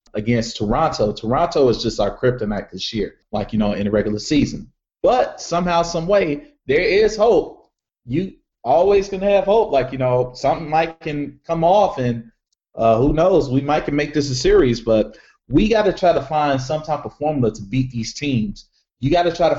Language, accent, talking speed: English, American, 200 wpm